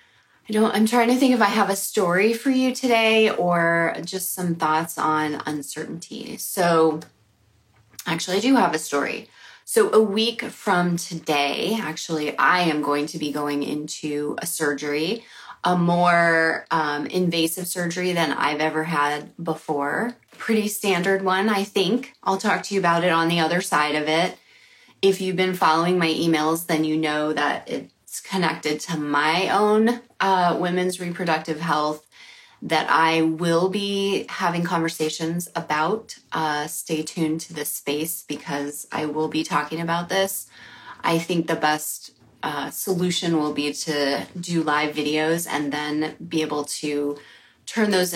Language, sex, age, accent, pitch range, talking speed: English, female, 20-39, American, 155-190 Hz, 160 wpm